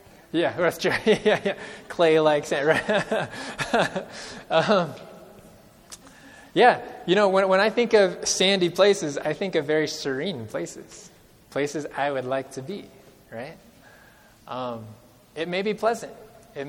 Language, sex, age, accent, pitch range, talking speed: English, male, 20-39, American, 140-200 Hz, 135 wpm